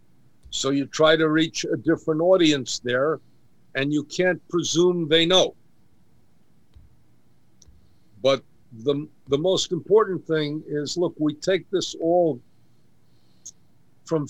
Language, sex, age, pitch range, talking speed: English, male, 60-79, 140-165 Hz, 120 wpm